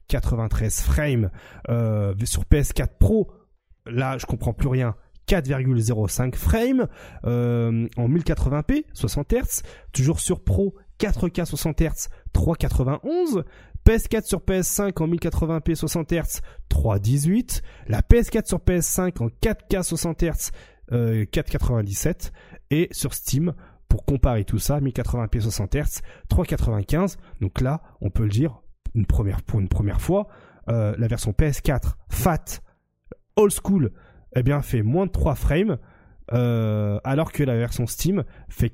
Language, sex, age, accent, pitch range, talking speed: French, male, 30-49, French, 110-160 Hz, 130 wpm